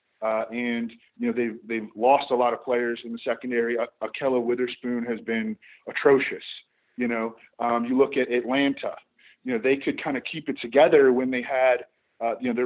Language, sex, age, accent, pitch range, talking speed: English, male, 40-59, American, 120-145 Hz, 205 wpm